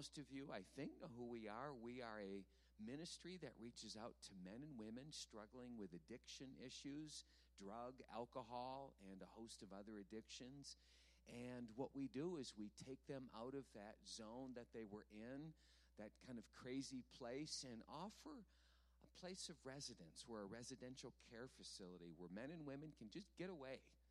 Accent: American